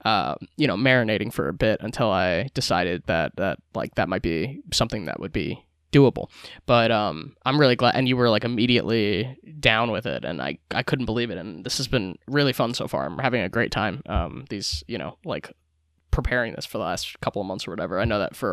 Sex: male